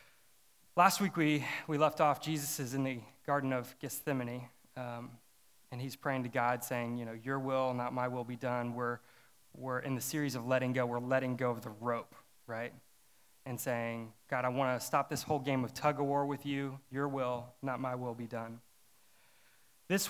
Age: 30-49